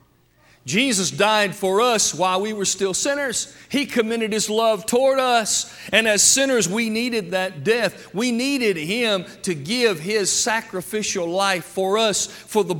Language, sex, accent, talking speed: English, male, American, 160 wpm